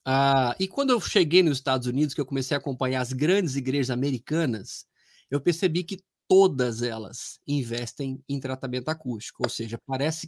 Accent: Brazilian